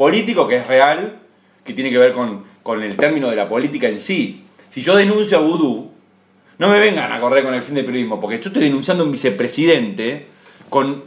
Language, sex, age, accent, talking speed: Spanish, male, 30-49, Argentinian, 215 wpm